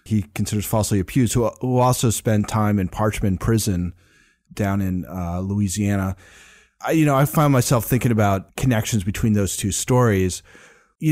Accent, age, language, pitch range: American, 30-49, English, 100-130 Hz